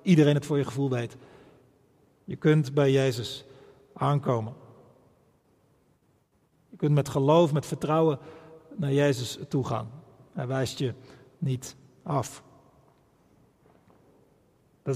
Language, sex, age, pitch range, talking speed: Dutch, male, 40-59, 135-170 Hz, 110 wpm